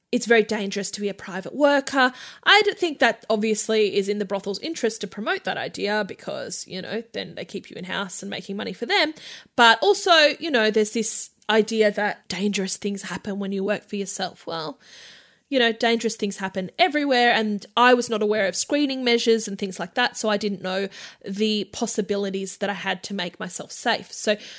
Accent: Australian